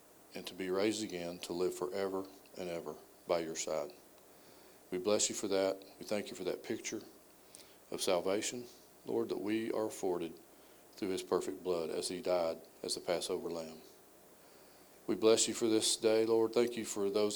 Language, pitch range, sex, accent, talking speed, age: English, 95-110 Hz, male, American, 185 wpm, 40-59